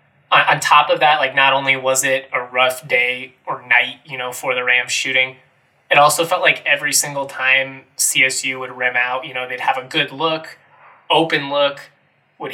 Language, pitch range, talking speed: English, 125-150 Hz, 195 wpm